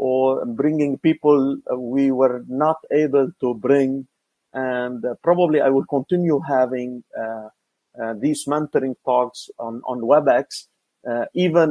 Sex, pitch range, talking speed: male, 120-140 Hz, 135 wpm